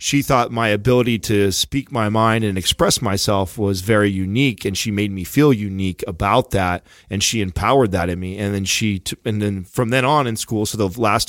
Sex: male